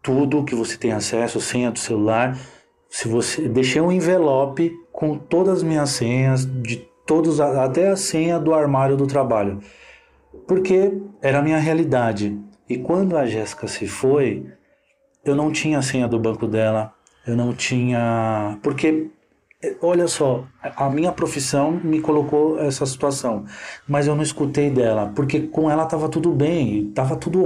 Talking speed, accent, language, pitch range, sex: 155 wpm, Brazilian, Portuguese, 120-155 Hz, male